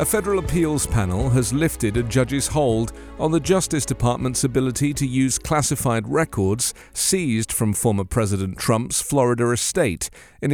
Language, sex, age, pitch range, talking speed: English, male, 40-59, 110-150 Hz, 150 wpm